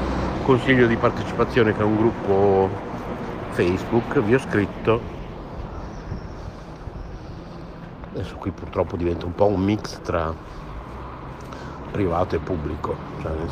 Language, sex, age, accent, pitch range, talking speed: Italian, male, 60-79, native, 90-110 Hz, 110 wpm